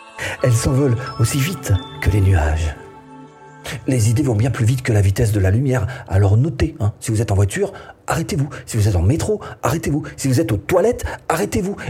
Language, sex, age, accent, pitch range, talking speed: French, male, 40-59, French, 110-150 Hz, 200 wpm